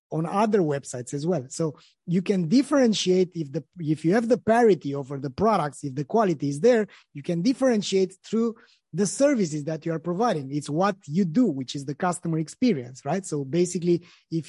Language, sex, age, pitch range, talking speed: English, male, 30-49, 160-225 Hz, 195 wpm